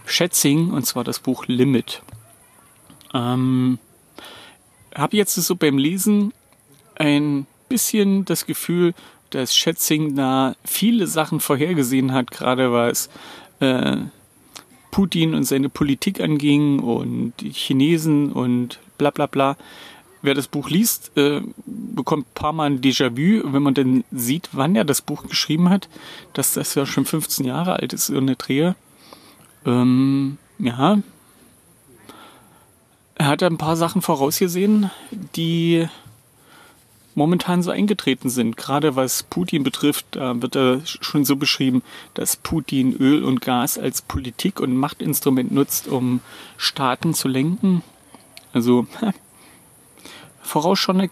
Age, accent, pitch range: 40-59, German, 130-170 Hz